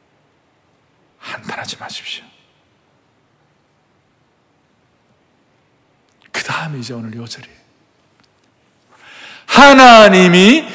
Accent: native